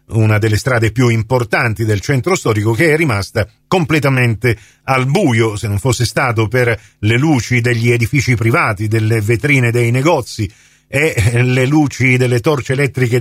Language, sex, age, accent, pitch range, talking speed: Italian, male, 40-59, native, 110-130 Hz, 155 wpm